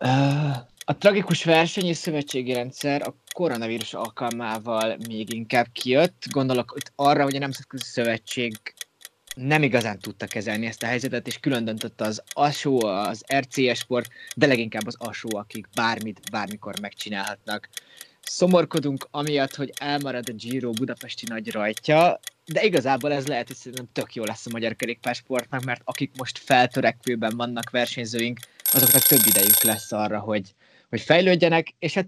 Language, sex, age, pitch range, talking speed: Hungarian, male, 20-39, 115-145 Hz, 150 wpm